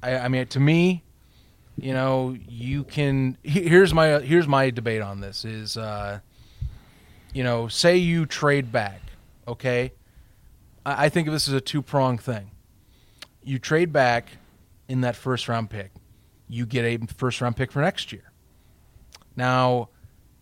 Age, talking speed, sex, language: 30-49, 145 wpm, male, English